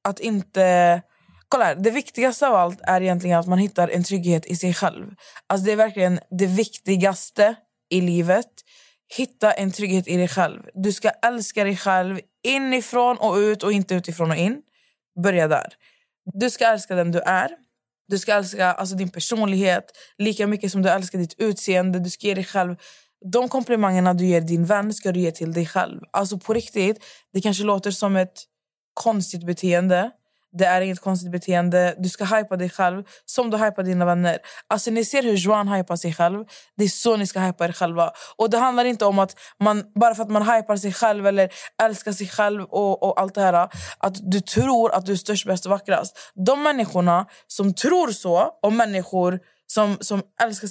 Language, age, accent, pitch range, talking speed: Swedish, 20-39, native, 180-215 Hz, 195 wpm